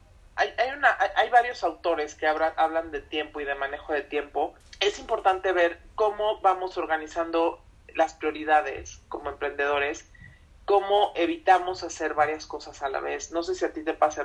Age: 30-49